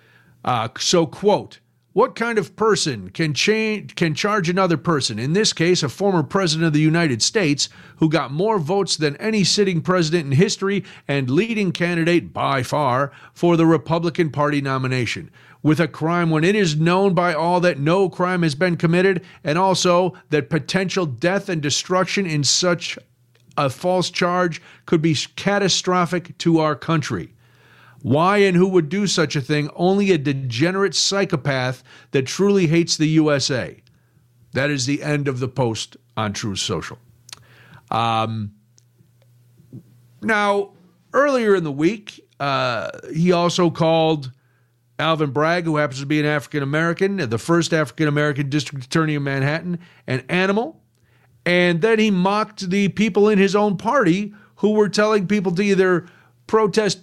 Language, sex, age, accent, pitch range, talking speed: English, male, 50-69, American, 140-190 Hz, 155 wpm